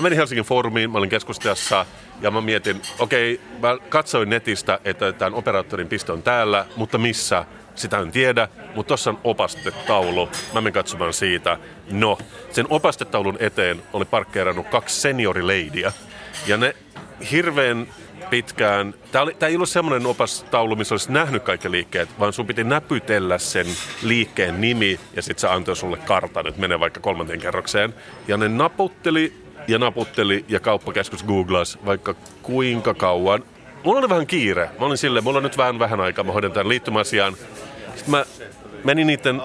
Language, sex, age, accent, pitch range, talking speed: Finnish, male, 30-49, native, 100-130 Hz, 155 wpm